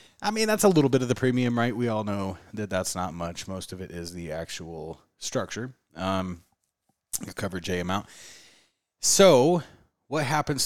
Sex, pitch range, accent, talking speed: male, 90-120 Hz, American, 175 wpm